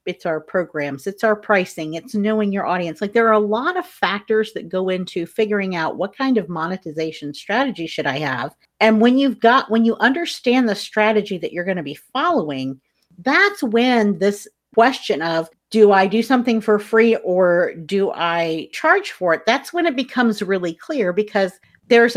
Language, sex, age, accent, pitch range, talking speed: English, female, 50-69, American, 175-235 Hz, 190 wpm